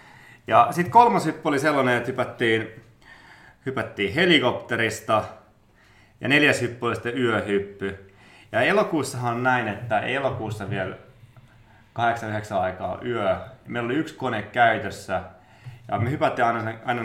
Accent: native